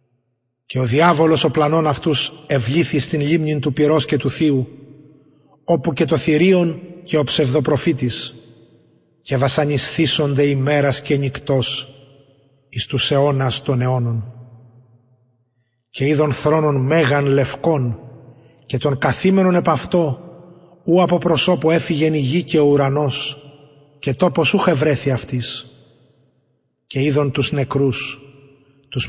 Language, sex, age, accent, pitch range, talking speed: Greek, male, 30-49, native, 135-165 Hz, 120 wpm